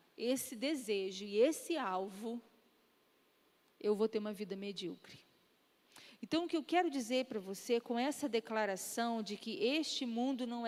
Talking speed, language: 150 wpm, Portuguese